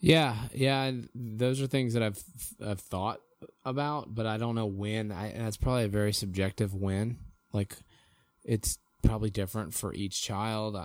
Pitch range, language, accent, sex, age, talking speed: 100-115 Hz, English, American, male, 20-39, 170 wpm